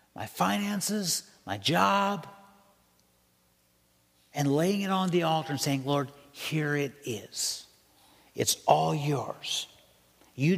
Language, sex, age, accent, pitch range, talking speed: English, male, 60-79, American, 130-210 Hz, 115 wpm